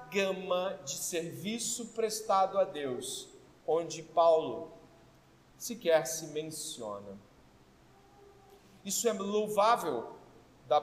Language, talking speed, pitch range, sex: Portuguese, 85 wpm, 190-275 Hz, male